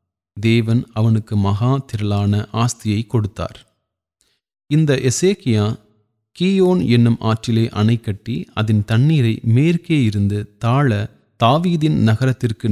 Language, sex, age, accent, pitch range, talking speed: Tamil, male, 30-49, native, 105-125 Hz, 95 wpm